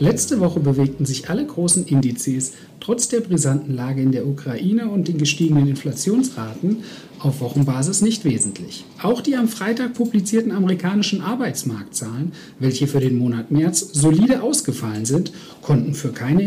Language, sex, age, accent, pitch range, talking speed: German, male, 60-79, German, 145-200 Hz, 145 wpm